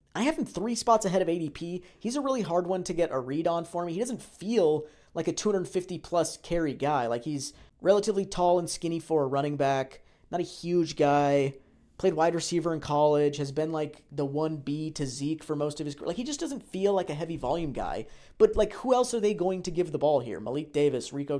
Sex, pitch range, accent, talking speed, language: male, 145-195 Hz, American, 235 wpm, English